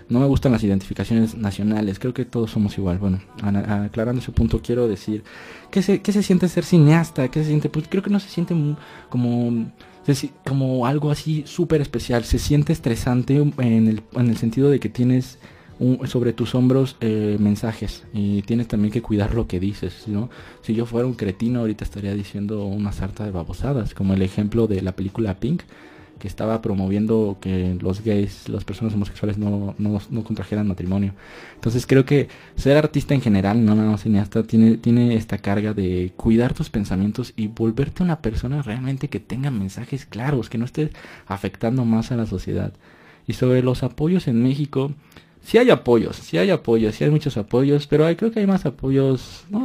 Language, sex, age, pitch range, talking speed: Spanish, male, 20-39, 105-135 Hz, 195 wpm